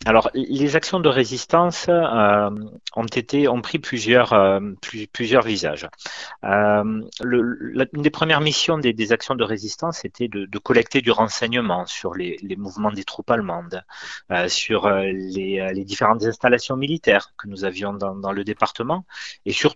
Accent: French